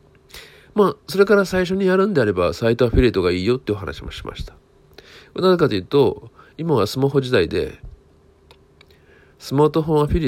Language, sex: Japanese, male